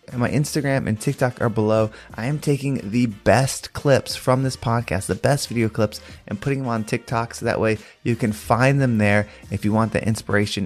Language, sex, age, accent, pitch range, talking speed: English, male, 20-39, American, 105-125 Hz, 210 wpm